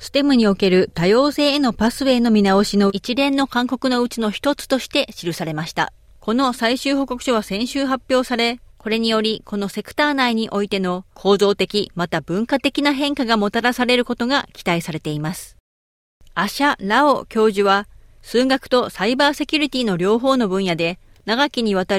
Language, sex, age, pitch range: Japanese, female, 40-59, 195-265 Hz